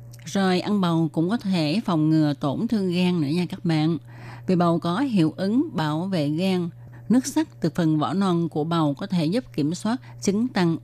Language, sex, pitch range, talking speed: Vietnamese, female, 145-190 Hz, 210 wpm